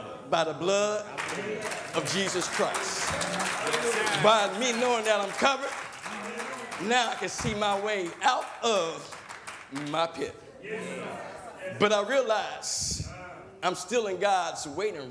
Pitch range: 140-200 Hz